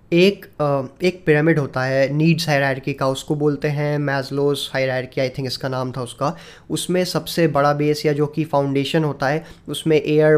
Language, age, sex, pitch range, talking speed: Hindi, 20-39, male, 140-155 Hz, 185 wpm